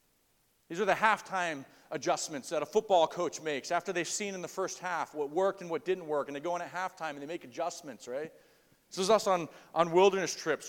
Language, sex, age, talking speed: English, male, 40-59, 230 wpm